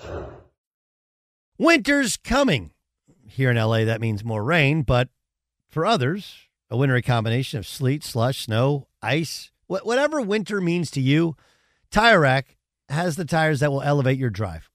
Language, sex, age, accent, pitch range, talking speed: English, male, 50-69, American, 120-175 Hz, 145 wpm